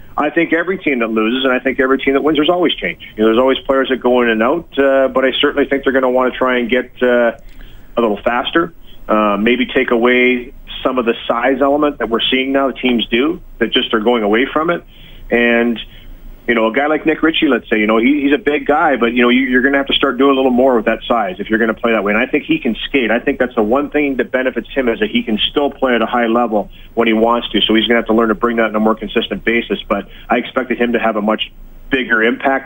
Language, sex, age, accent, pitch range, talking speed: English, male, 40-59, American, 110-130 Hz, 290 wpm